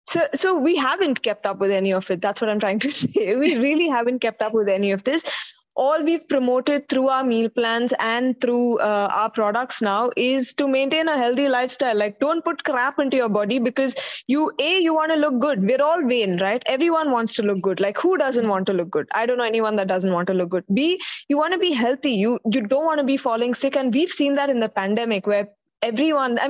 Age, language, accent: 20-39, English, Indian